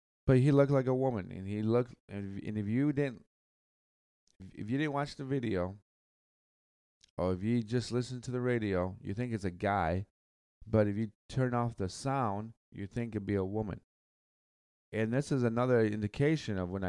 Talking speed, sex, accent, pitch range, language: 190 wpm, male, American, 90-120 Hz, English